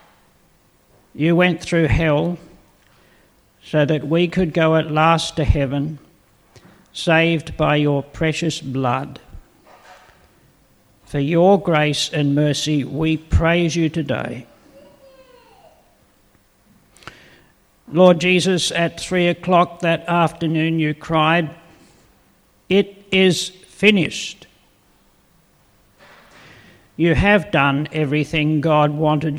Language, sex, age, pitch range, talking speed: English, male, 60-79, 150-170 Hz, 90 wpm